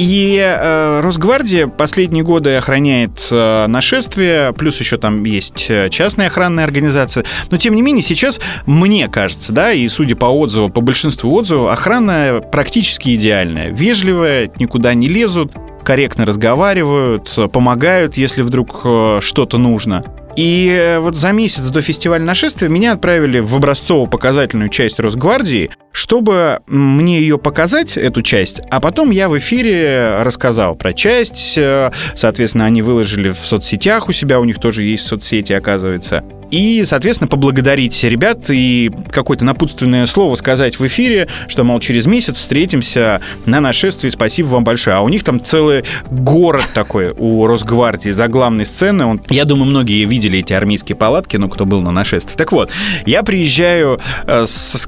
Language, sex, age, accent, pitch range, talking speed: Russian, male, 30-49, native, 115-165 Hz, 145 wpm